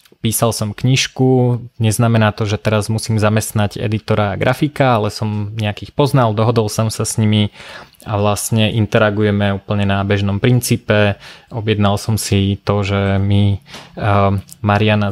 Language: Slovak